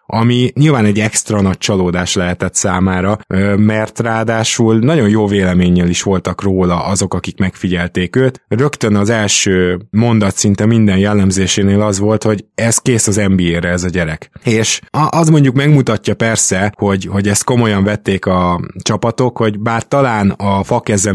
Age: 20-39